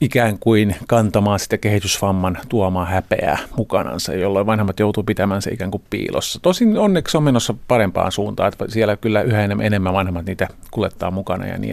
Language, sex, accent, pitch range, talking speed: Finnish, male, native, 100-125 Hz, 170 wpm